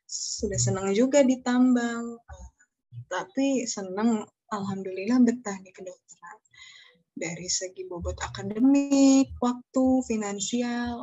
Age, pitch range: 20-39, 185-250 Hz